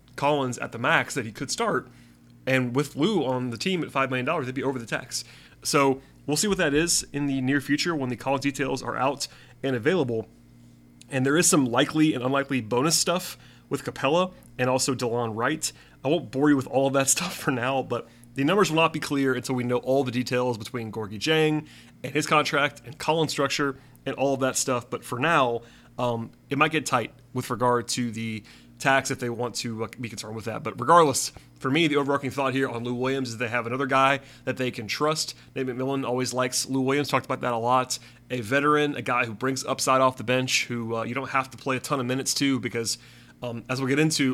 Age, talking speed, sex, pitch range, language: 30-49, 235 wpm, male, 120-140 Hz, English